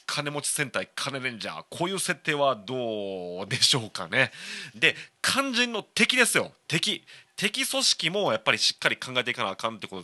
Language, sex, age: Japanese, male, 30-49